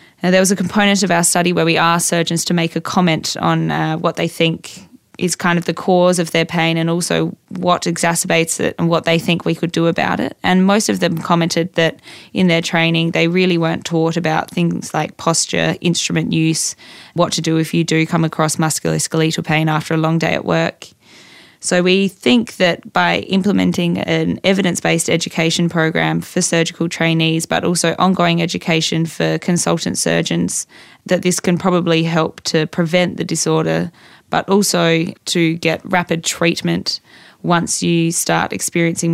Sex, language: female, English